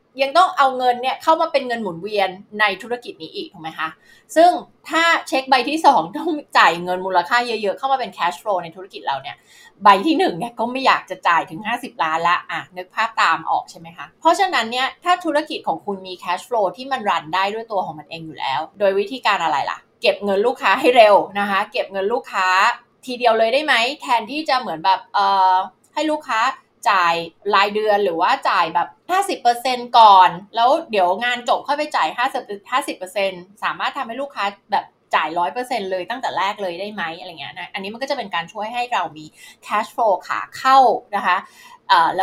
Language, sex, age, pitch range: Thai, female, 20-39, 180-260 Hz